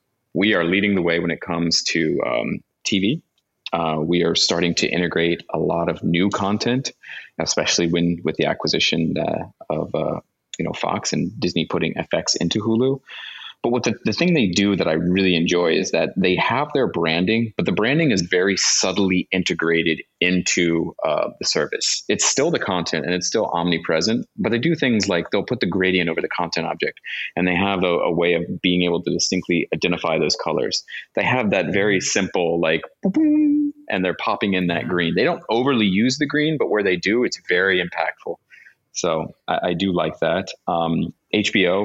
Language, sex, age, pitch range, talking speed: English, male, 30-49, 85-100 Hz, 195 wpm